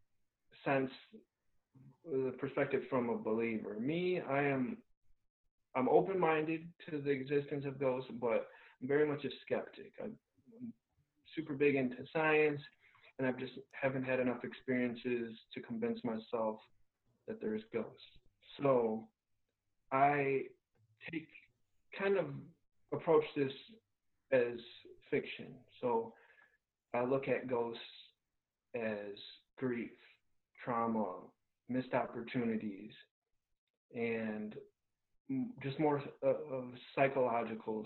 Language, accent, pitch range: English, American, 115-165 Hz